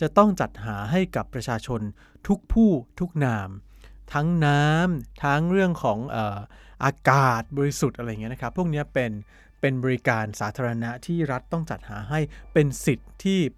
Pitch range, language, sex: 110-150 Hz, Thai, male